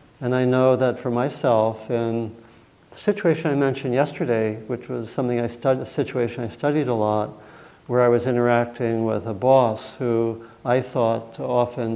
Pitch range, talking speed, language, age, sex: 115-135 Hz, 170 wpm, English, 50-69, male